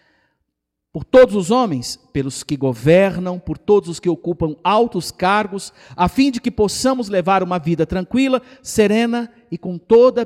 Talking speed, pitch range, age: 160 wpm, 145-215 Hz, 50-69